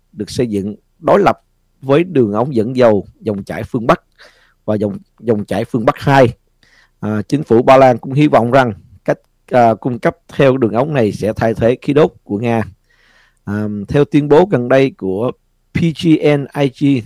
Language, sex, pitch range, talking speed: Vietnamese, male, 105-145 Hz, 185 wpm